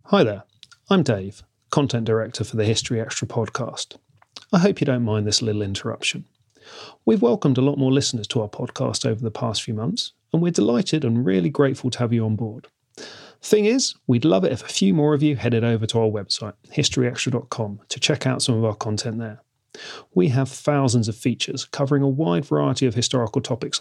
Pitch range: 110-145 Hz